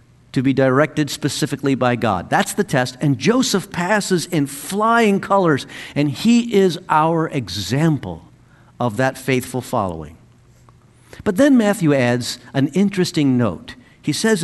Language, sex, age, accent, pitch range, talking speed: English, male, 50-69, American, 120-170 Hz, 135 wpm